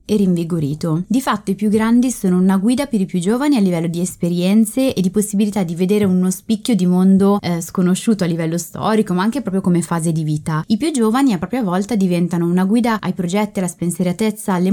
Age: 20-39